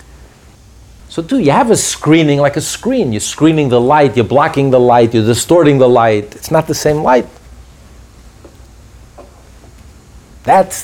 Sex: male